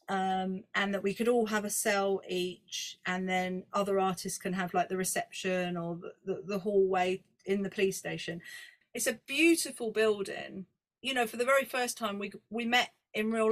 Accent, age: British, 30-49